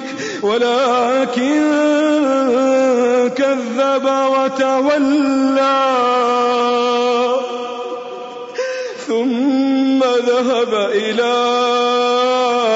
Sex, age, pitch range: male, 30-49, 240-270 Hz